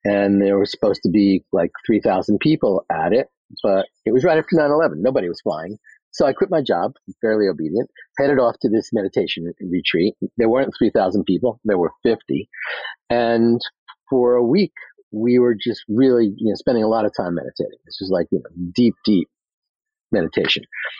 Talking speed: 185 wpm